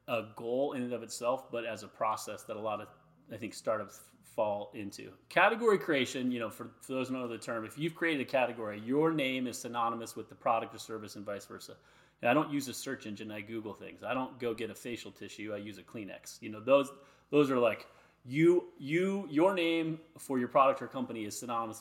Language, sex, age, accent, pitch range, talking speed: English, male, 30-49, American, 115-155 Hz, 230 wpm